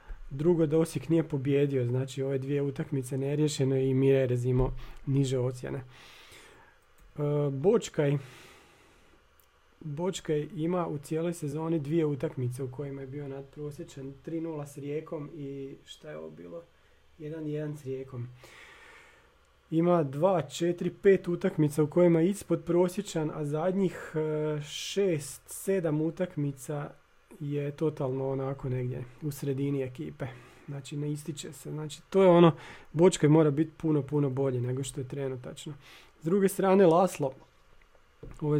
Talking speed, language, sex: 130 wpm, Croatian, male